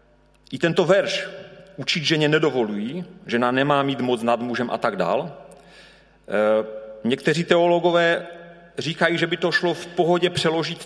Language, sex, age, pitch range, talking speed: Czech, male, 40-59, 125-175 Hz, 135 wpm